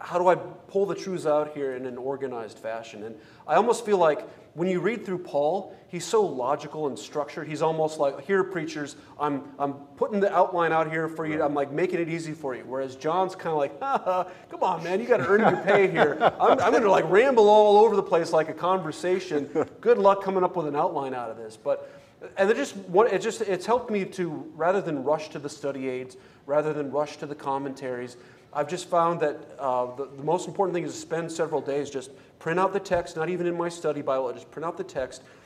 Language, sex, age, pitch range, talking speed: English, male, 30-49, 140-180 Hz, 235 wpm